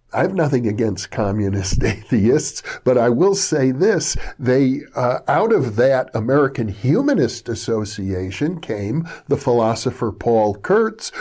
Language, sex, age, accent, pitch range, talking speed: English, male, 50-69, American, 110-140 Hz, 130 wpm